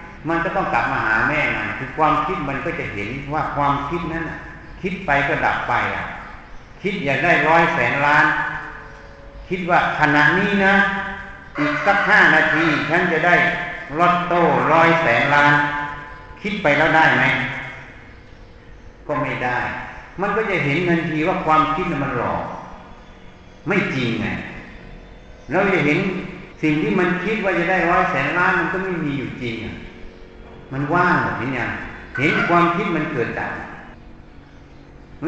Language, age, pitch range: Thai, 60-79, 125-175 Hz